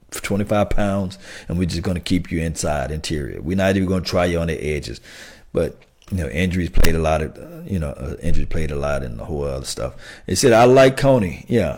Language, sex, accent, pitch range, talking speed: English, male, American, 85-115 Hz, 250 wpm